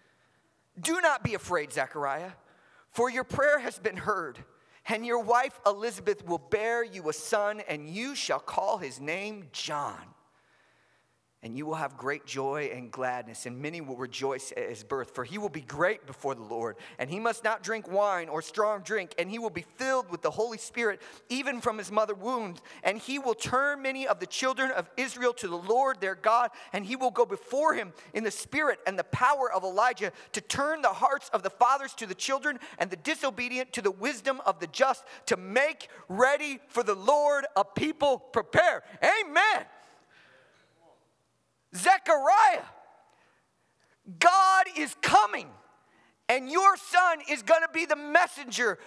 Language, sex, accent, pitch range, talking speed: English, male, American, 170-290 Hz, 175 wpm